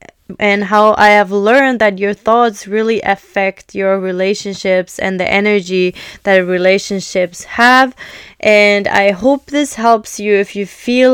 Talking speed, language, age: 145 wpm, English, 20-39